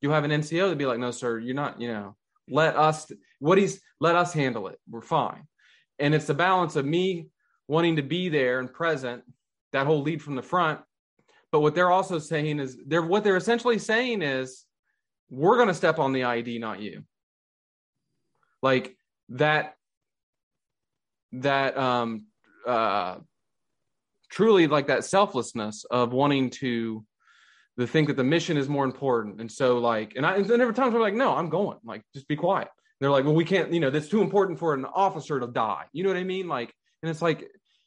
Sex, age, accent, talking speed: male, 20-39, American, 200 wpm